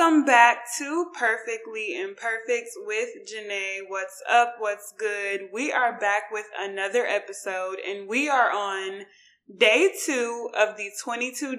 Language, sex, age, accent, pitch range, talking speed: English, female, 20-39, American, 205-255 Hz, 135 wpm